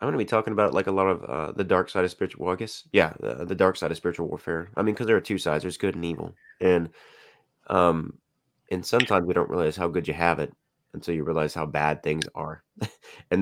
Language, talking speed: English, 255 wpm